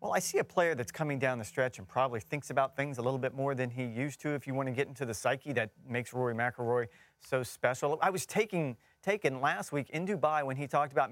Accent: American